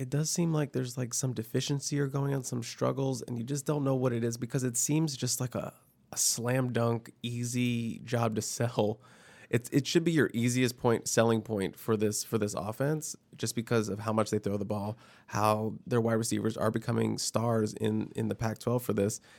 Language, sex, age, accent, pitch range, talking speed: English, male, 20-39, American, 110-125 Hz, 220 wpm